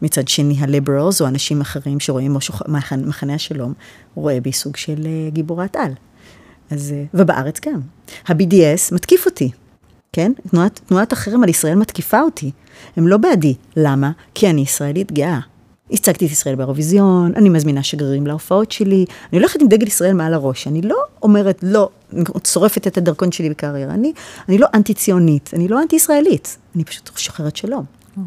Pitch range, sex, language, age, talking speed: 145-205 Hz, female, Hebrew, 30-49, 165 wpm